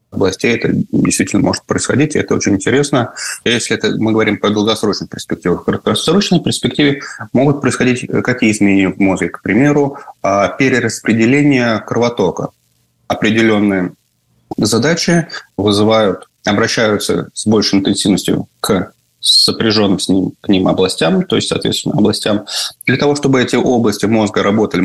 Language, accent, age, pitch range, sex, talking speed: Russian, native, 20-39, 105-130 Hz, male, 130 wpm